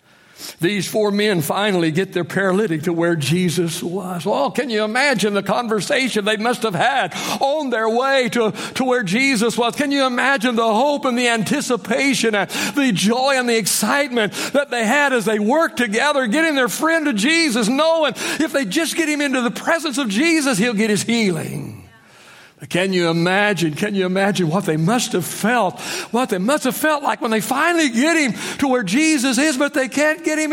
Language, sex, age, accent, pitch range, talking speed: English, male, 60-79, American, 190-270 Hz, 200 wpm